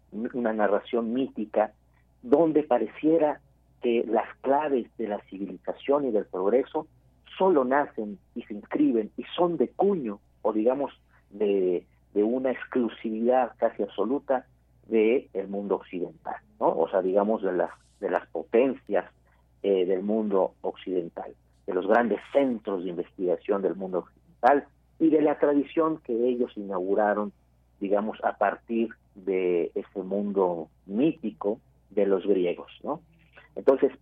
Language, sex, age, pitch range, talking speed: Spanish, male, 50-69, 95-130 Hz, 135 wpm